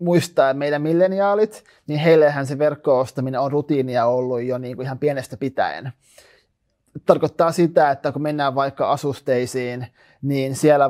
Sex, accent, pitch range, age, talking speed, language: male, native, 130-155 Hz, 30-49, 140 wpm, Finnish